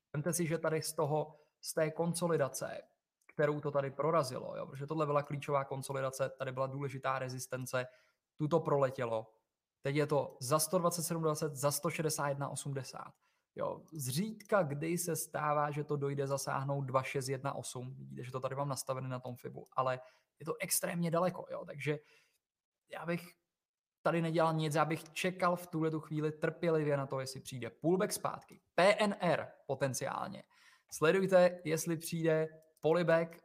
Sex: male